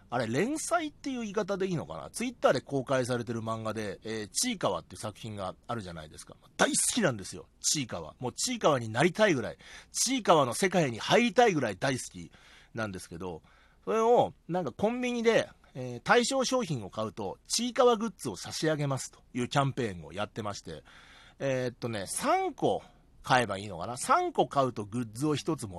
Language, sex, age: Japanese, male, 40-59